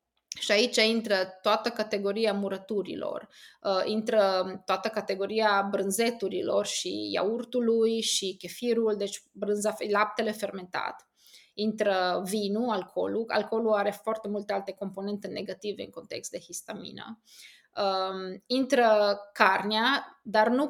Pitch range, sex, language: 200-255 Hz, female, Romanian